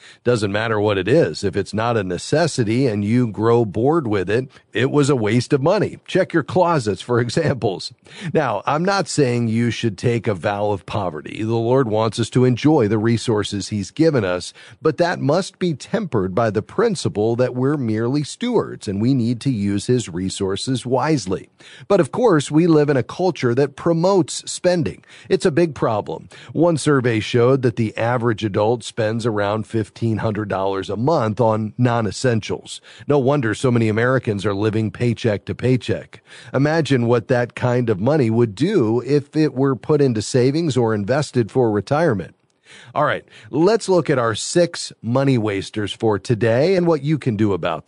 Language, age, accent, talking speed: English, 40-59, American, 180 wpm